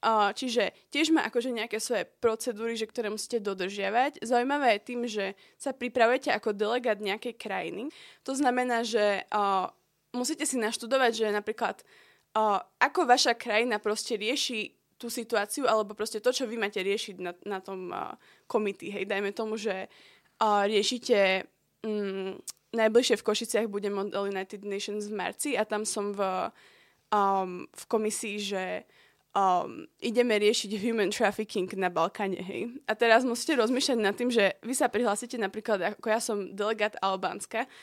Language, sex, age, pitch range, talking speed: Slovak, female, 20-39, 205-245 Hz, 155 wpm